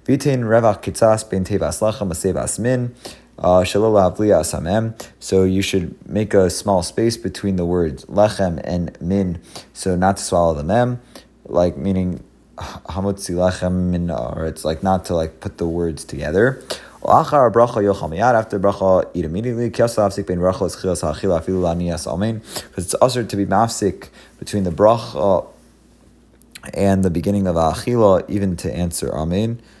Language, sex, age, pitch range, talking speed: English, male, 30-49, 85-105 Hz, 110 wpm